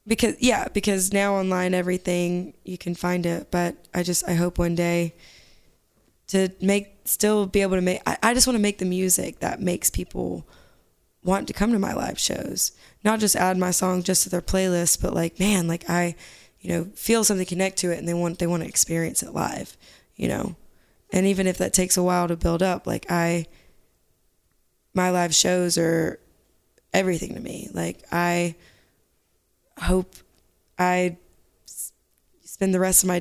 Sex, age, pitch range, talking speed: female, 20-39, 165-185 Hz, 185 wpm